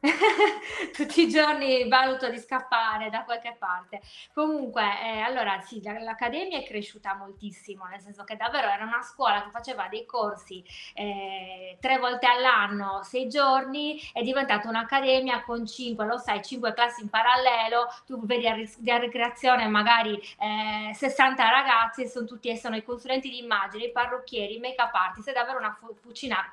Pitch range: 210-255 Hz